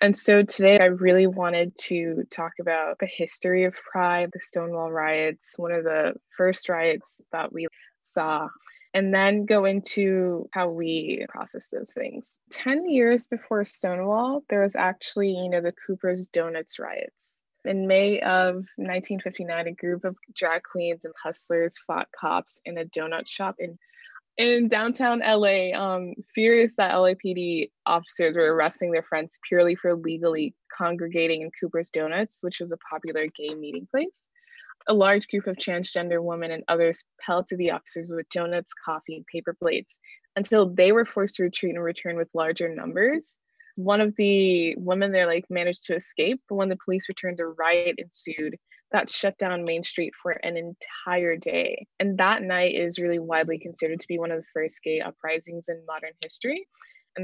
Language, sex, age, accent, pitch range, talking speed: English, female, 20-39, American, 165-200 Hz, 170 wpm